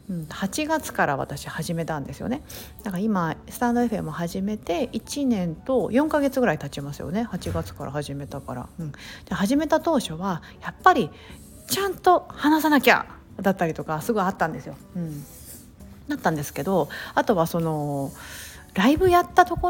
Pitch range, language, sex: 165-260 Hz, Japanese, female